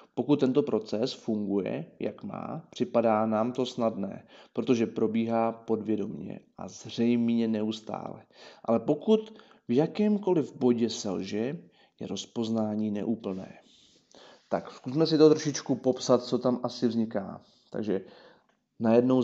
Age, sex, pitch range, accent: 30-49, male, 110-130 Hz, native